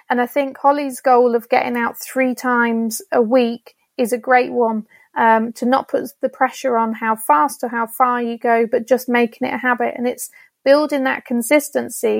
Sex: female